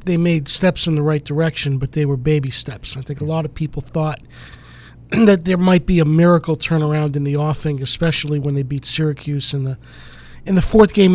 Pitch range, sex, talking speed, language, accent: 140-165 Hz, male, 215 wpm, English, American